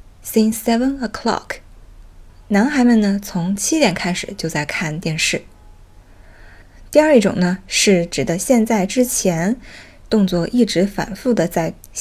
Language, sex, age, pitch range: Chinese, female, 20-39, 170-235 Hz